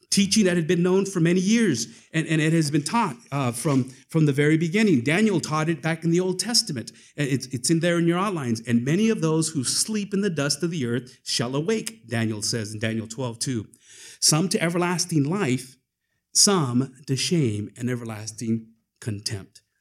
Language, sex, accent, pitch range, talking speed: English, male, American, 125-185 Hz, 200 wpm